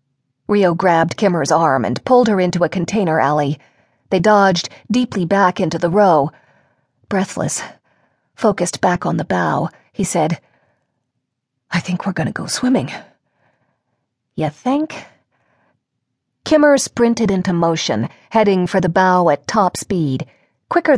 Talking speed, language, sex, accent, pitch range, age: 135 wpm, English, female, American, 165-230 Hz, 40-59